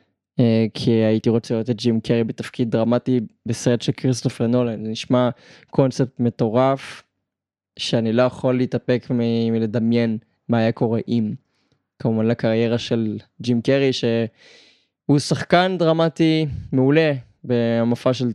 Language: Hebrew